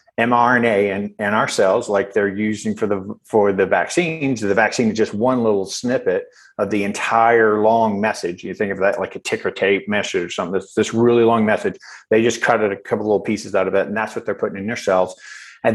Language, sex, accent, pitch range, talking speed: English, male, American, 105-125 Hz, 230 wpm